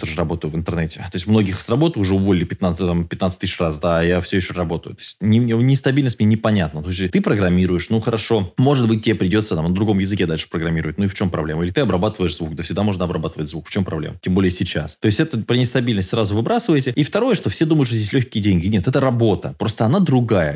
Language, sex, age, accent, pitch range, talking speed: Russian, male, 20-39, native, 90-125 Hz, 250 wpm